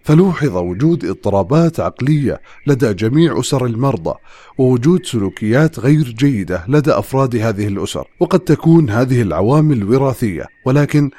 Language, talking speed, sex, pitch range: English, 120 wpm, male, 110-150 Hz